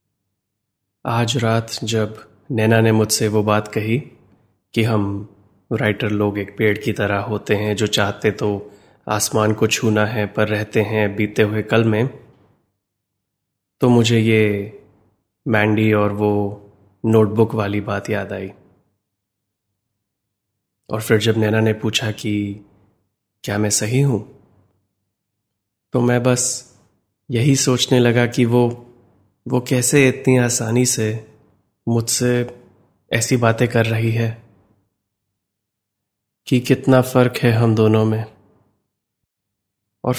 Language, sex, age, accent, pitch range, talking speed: Hindi, male, 20-39, native, 100-115 Hz, 120 wpm